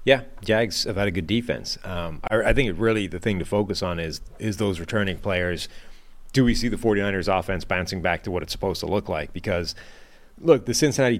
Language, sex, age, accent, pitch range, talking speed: English, male, 30-49, American, 90-110 Hz, 225 wpm